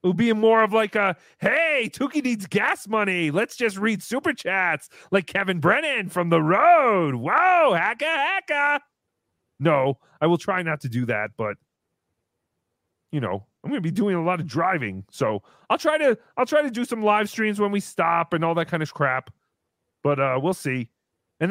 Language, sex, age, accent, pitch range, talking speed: English, male, 30-49, American, 165-245 Hz, 195 wpm